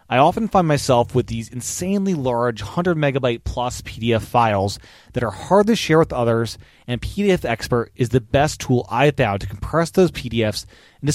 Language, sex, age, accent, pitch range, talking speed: English, male, 30-49, American, 115-160 Hz, 190 wpm